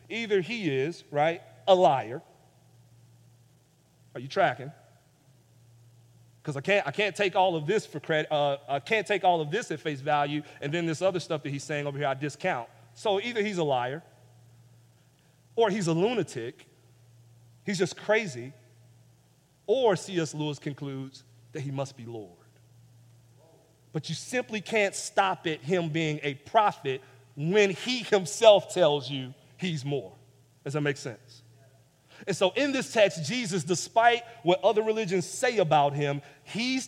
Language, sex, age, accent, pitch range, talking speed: English, male, 40-59, American, 135-190 Hz, 160 wpm